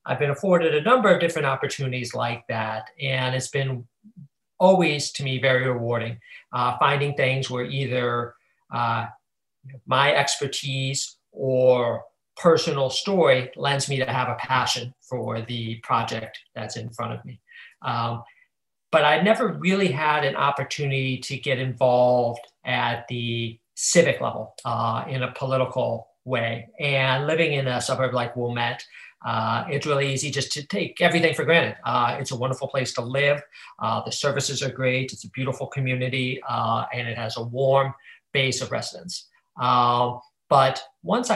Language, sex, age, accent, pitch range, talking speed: English, male, 50-69, American, 125-145 Hz, 155 wpm